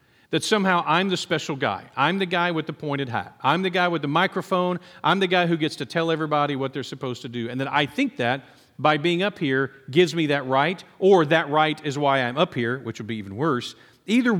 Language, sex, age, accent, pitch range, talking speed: English, male, 40-59, American, 130-175 Hz, 245 wpm